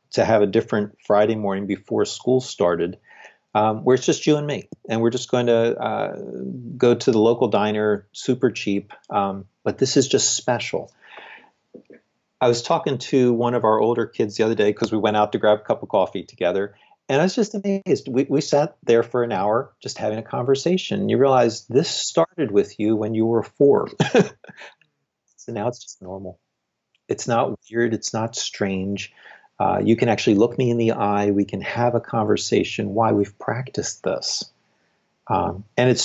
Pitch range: 105-135 Hz